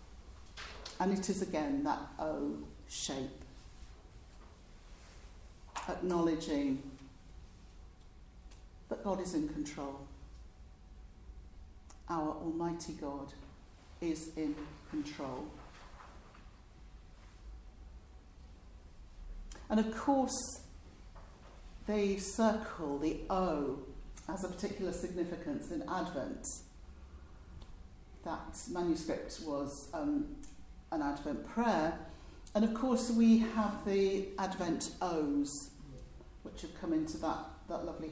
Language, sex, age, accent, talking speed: English, female, 60-79, British, 85 wpm